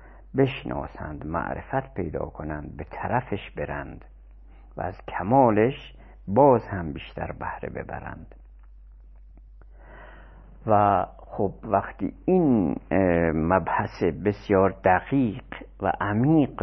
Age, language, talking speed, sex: 50-69, Persian, 85 wpm, male